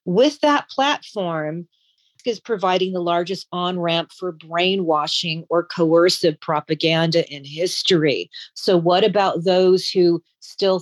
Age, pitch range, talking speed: 40-59, 160-200 Hz, 120 wpm